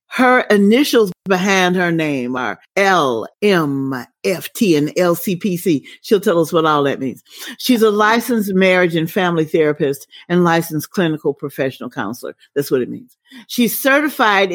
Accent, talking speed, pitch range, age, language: American, 140 wpm, 175-215 Hz, 40-59, English